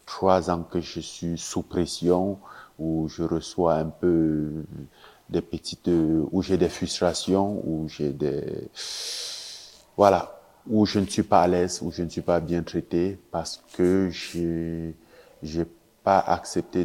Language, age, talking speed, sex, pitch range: French, 50-69, 150 wpm, male, 85-95 Hz